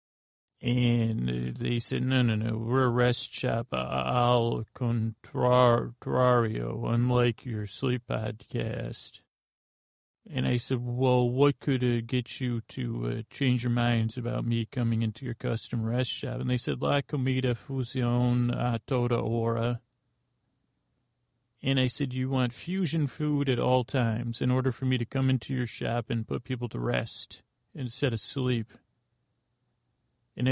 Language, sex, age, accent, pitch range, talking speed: English, male, 40-59, American, 115-125 Hz, 145 wpm